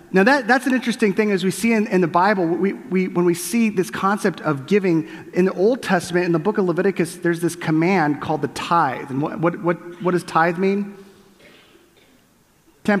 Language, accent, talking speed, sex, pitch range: English, American, 210 wpm, male, 165-200 Hz